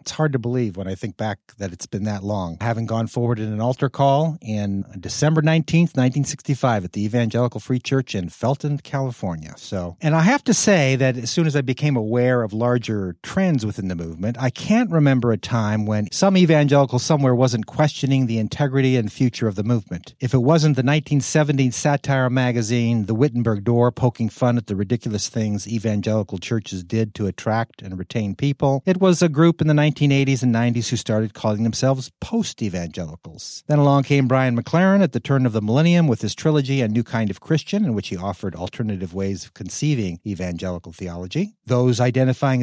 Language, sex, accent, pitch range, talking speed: English, male, American, 110-145 Hz, 195 wpm